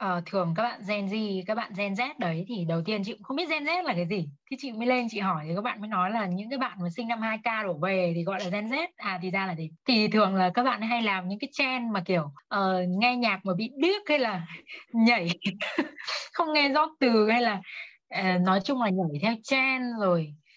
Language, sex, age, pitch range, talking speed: Vietnamese, female, 20-39, 185-250 Hz, 260 wpm